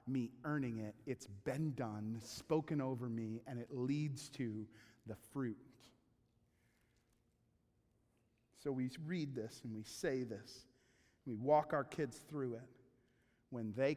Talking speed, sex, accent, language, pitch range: 140 wpm, male, American, English, 120-150 Hz